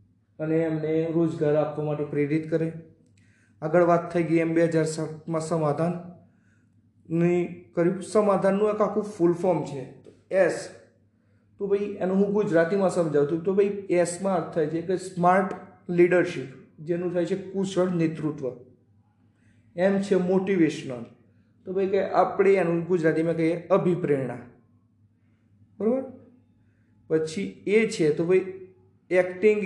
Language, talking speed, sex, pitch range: Gujarati, 105 wpm, male, 135-185 Hz